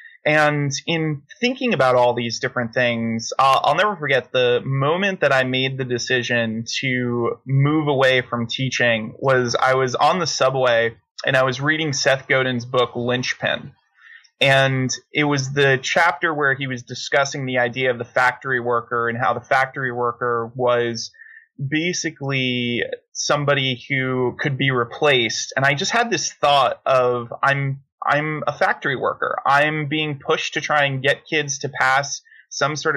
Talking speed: 160 wpm